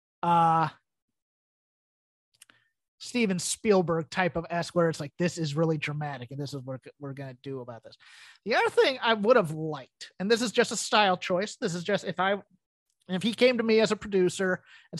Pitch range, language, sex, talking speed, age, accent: 160-220 Hz, English, male, 205 wpm, 30-49, American